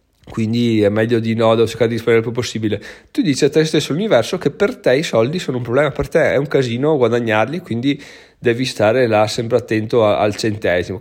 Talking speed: 220 wpm